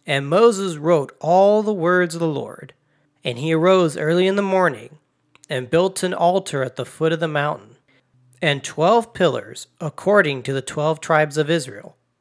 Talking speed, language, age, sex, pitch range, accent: 175 wpm, English, 40-59, male, 135-185 Hz, American